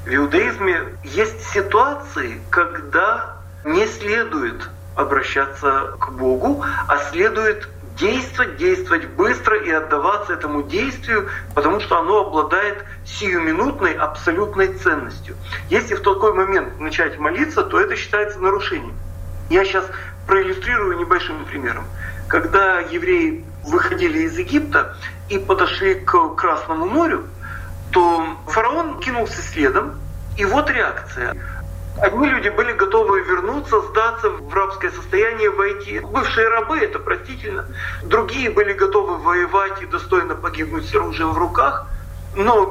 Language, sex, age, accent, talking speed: Russian, male, 40-59, native, 120 wpm